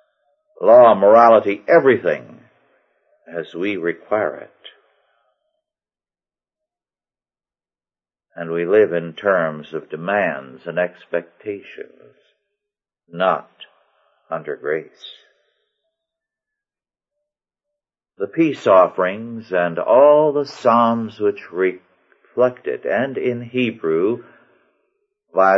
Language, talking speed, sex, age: English, 75 wpm, male, 60-79